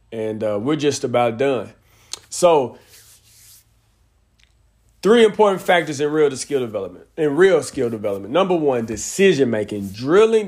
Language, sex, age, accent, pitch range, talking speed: English, male, 40-59, American, 115-140 Hz, 130 wpm